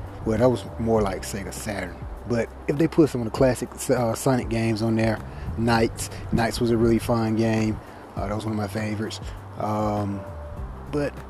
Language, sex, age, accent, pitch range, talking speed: English, male, 20-39, American, 105-130 Hz, 190 wpm